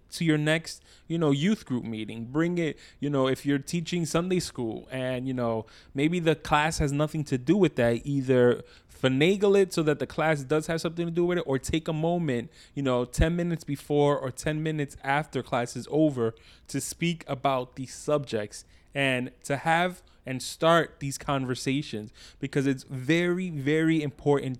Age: 20-39